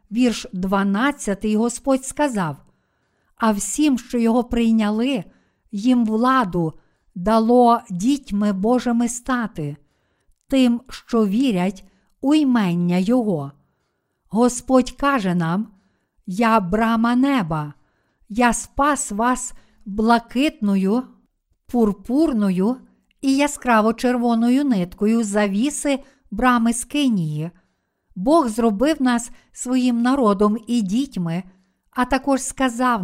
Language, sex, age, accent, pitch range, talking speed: Ukrainian, female, 50-69, native, 205-255 Hz, 85 wpm